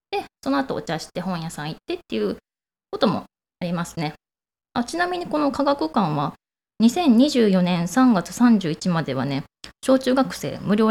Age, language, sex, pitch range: 20-39, Japanese, female, 165-260 Hz